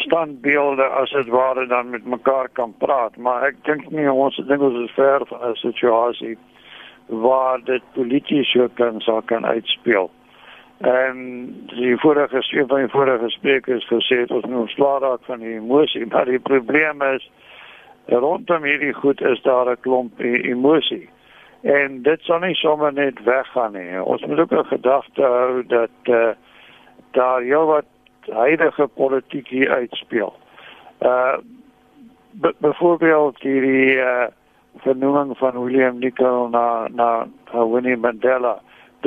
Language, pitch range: Dutch, 125-145 Hz